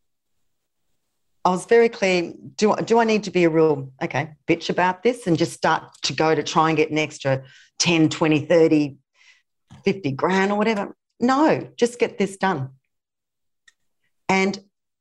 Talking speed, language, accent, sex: 160 wpm, English, Australian, female